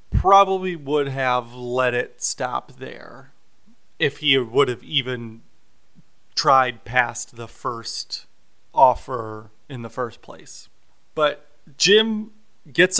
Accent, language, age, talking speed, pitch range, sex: American, English, 30-49, 110 wpm, 125-155 Hz, male